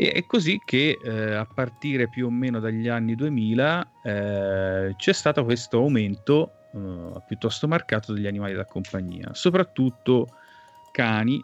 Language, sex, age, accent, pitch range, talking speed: Italian, male, 30-49, native, 100-120 Hz, 135 wpm